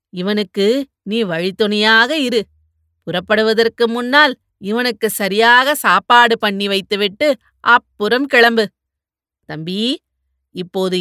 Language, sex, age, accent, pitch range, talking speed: Tamil, female, 30-49, native, 200-230 Hz, 80 wpm